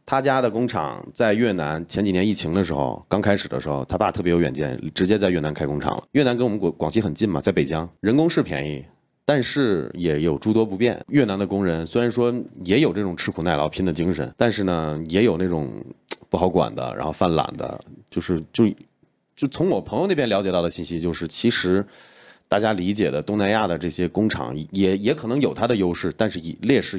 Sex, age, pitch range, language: male, 30-49, 85-115 Hz, Chinese